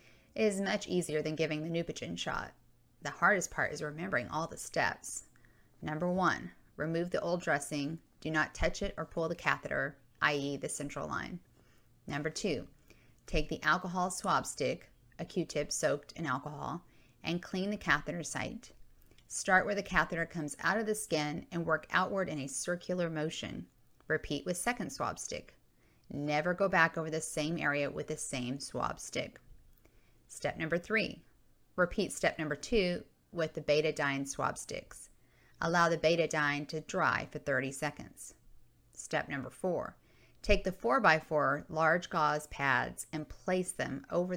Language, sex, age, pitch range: English, female, 30-49, 145-180 Hz